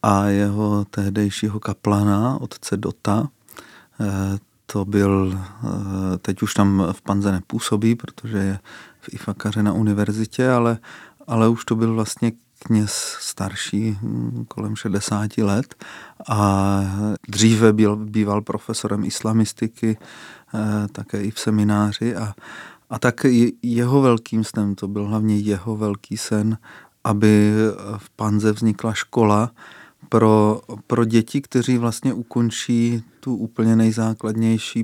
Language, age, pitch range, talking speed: Czech, 30-49, 100-115 Hz, 115 wpm